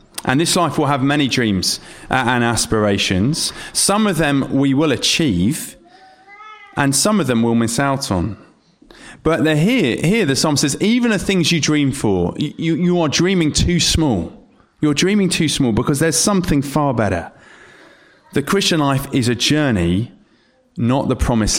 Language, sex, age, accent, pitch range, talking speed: English, male, 30-49, British, 110-155 Hz, 165 wpm